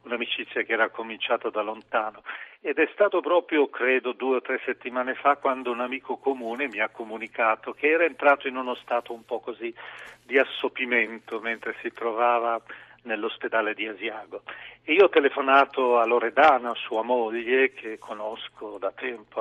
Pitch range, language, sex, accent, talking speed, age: 120-150 Hz, Italian, male, native, 160 wpm, 40-59